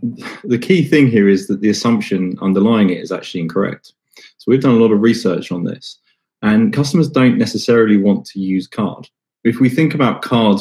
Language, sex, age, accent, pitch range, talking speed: English, male, 20-39, British, 95-130 Hz, 200 wpm